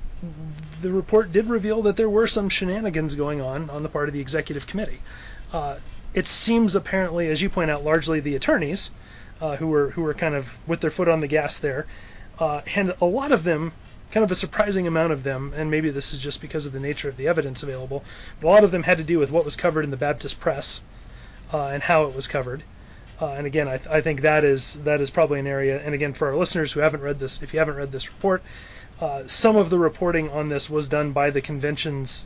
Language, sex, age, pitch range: English, male, 30-49, 140-165 Hz